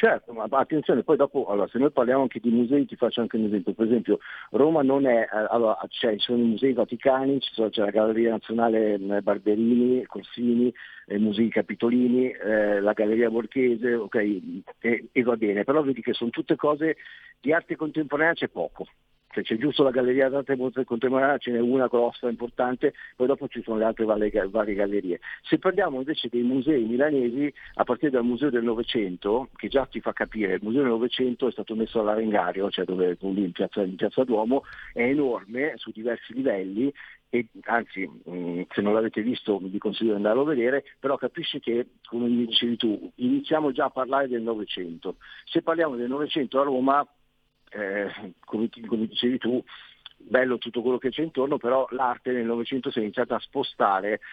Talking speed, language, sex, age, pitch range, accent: 185 wpm, Italian, male, 50-69, 110-130 Hz, native